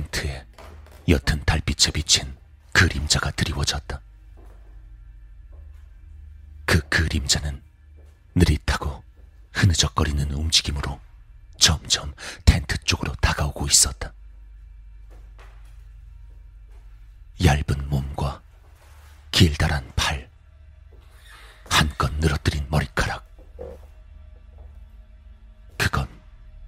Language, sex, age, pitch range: Korean, male, 40-59, 75-80 Hz